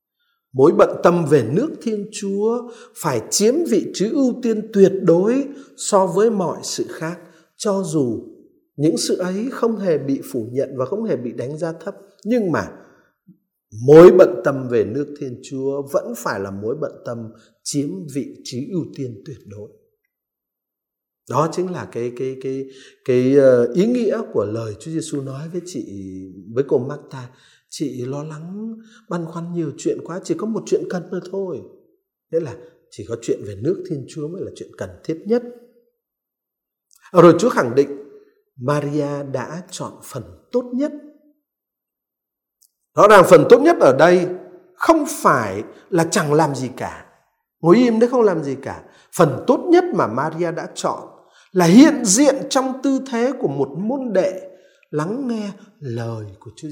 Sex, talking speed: male, 170 wpm